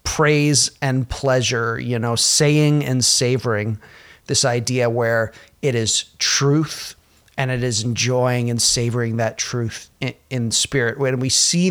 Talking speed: 145 wpm